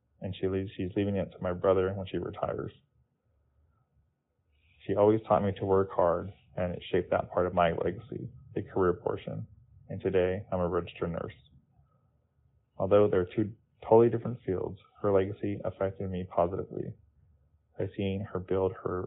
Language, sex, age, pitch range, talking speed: English, male, 20-39, 90-100 Hz, 165 wpm